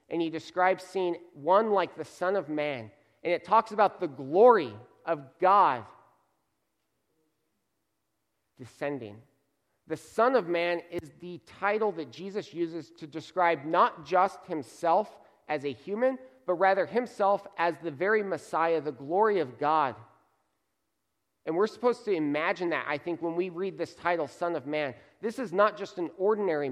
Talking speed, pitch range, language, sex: 155 wpm, 145-195 Hz, English, male